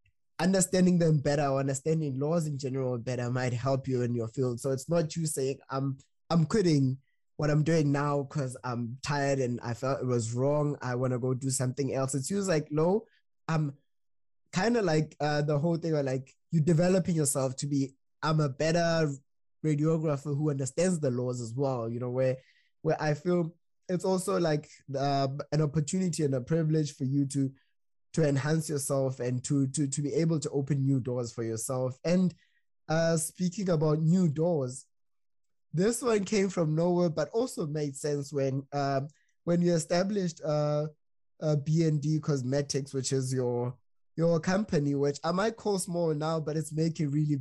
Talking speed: 180 wpm